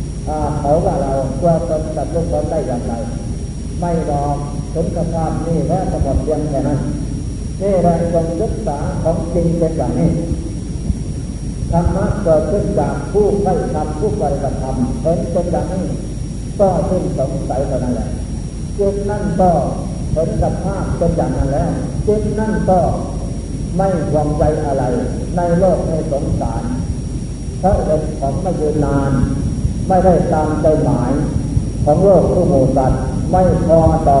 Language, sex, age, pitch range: Thai, male, 50-69, 140-175 Hz